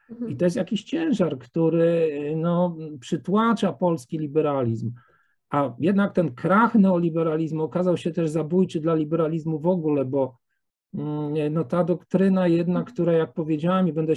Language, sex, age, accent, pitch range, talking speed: English, male, 50-69, Polish, 155-200 Hz, 140 wpm